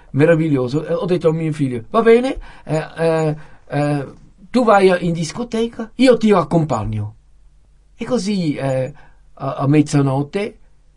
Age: 50-69